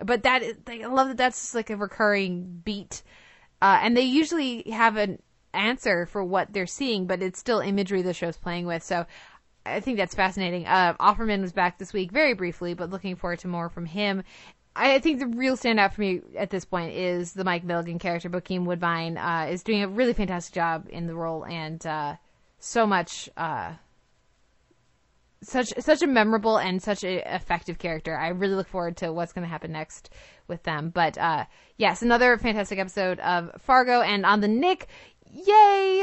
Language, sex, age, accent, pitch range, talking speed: English, female, 20-39, American, 175-230 Hz, 195 wpm